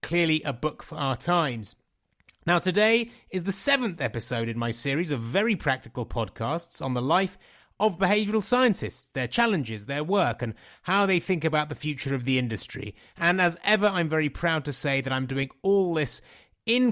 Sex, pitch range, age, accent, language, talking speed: male, 135-185 Hz, 30-49, British, English, 190 wpm